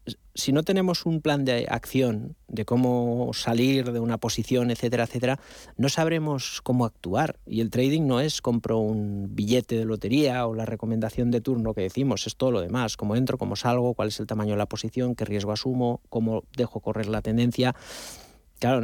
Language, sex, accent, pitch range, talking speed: Spanish, male, Spanish, 110-135 Hz, 190 wpm